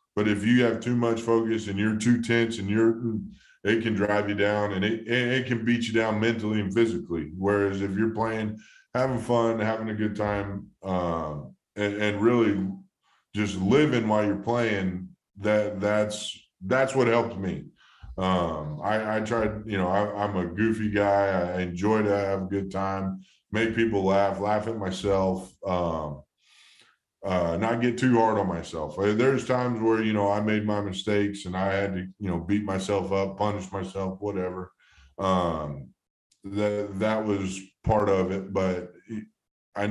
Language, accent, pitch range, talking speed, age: English, American, 95-110 Hz, 175 wpm, 20-39